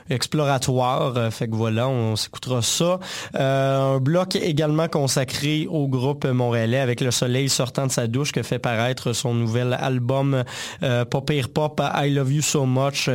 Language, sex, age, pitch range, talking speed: French, male, 20-39, 120-145 Hz, 170 wpm